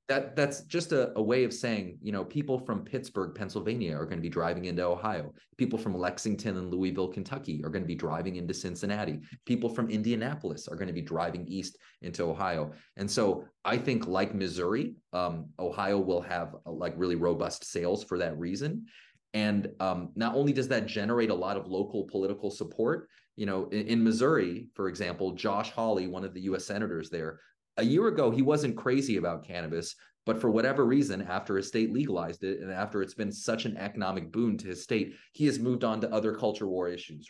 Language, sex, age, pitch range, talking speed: English, male, 30-49, 90-120 Hz, 205 wpm